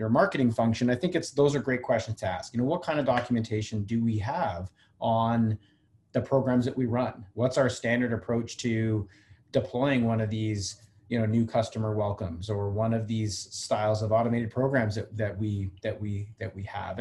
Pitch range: 110-125 Hz